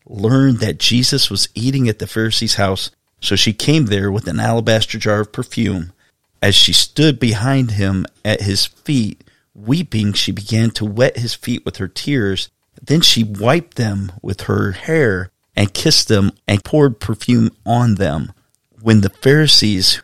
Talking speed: 165 wpm